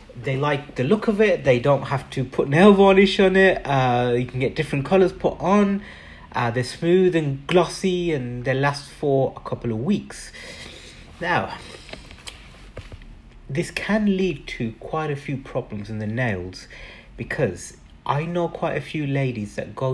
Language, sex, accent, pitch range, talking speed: English, male, British, 125-175 Hz, 170 wpm